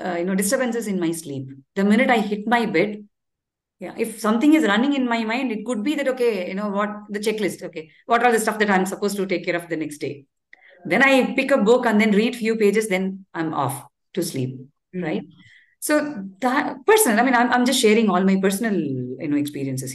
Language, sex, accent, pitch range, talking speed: English, female, Indian, 190-265 Hz, 230 wpm